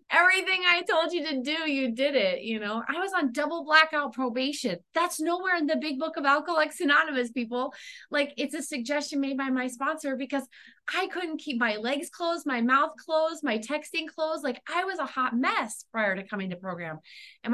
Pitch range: 225-310 Hz